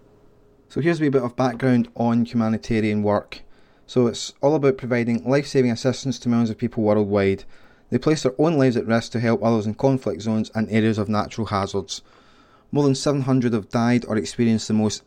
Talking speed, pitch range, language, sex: 195 wpm, 105-125 Hz, English, male